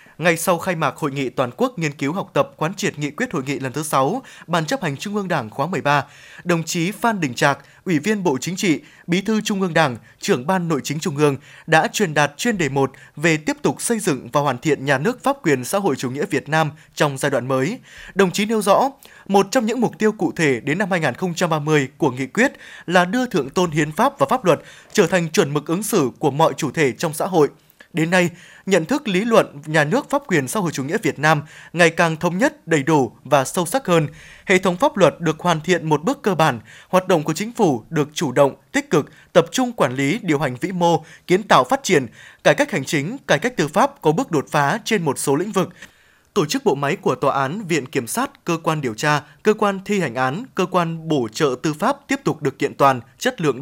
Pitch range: 145-205 Hz